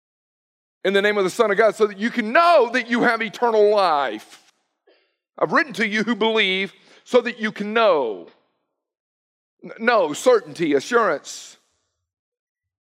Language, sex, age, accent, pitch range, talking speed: English, male, 50-69, American, 175-235 Hz, 155 wpm